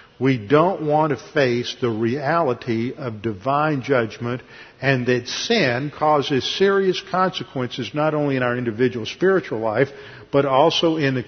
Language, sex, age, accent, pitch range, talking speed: English, male, 50-69, American, 125-155 Hz, 145 wpm